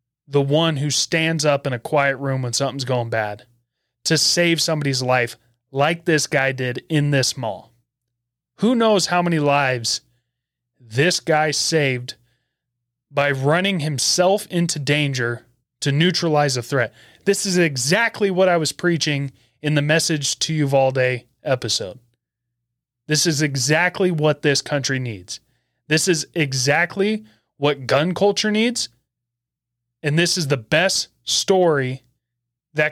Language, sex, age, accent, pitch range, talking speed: English, male, 30-49, American, 120-165 Hz, 135 wpm